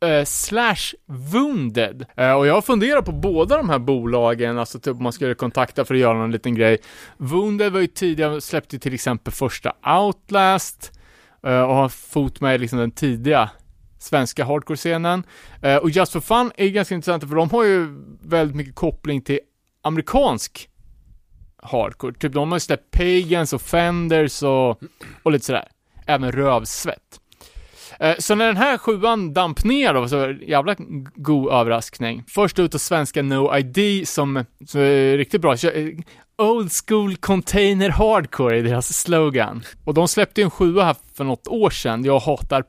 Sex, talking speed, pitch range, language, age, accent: male, 175 wpm, 130-180 Hz, Swedish, 30-49, Norwegian